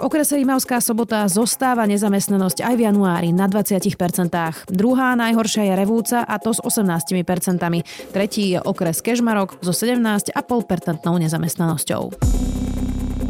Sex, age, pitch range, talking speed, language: female, 30-49, 170-225 Hz, 115 wpm, Slovak